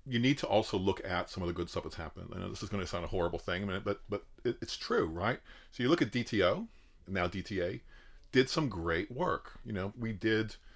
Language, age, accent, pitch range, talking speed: English, 40-59, American, 95-110 Hz, 240 wpm